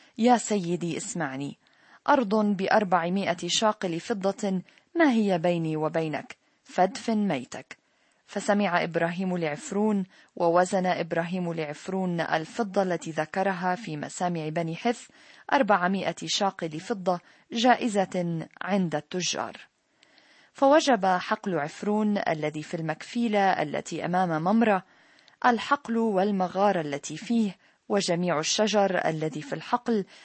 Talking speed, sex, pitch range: 100 wpm, female, 170-215 Hz